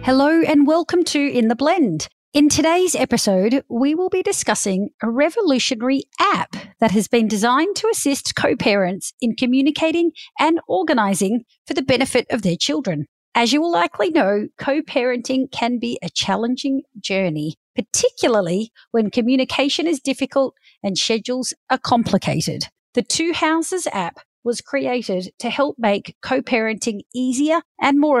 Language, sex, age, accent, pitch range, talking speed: English, female, 40-59, Australian, 205-290 Hz, 145 wpm